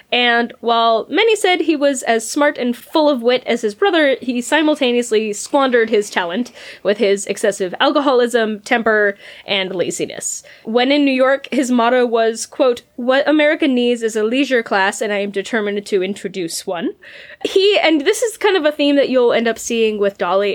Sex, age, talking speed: female, 10-29, 185 wpm